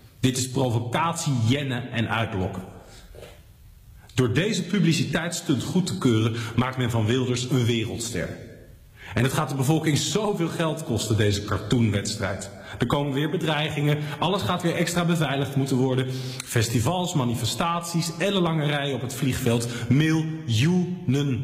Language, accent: Dutch, Dutch